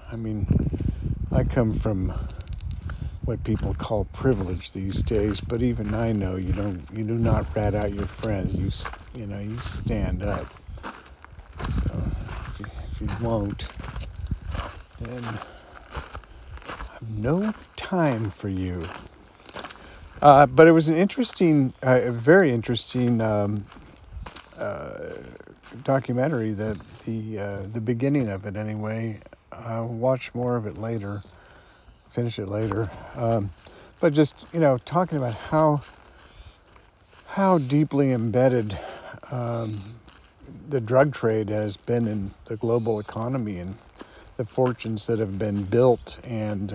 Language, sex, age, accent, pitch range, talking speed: English, male, 50-69, American, 95-120 Hz, 130 wpm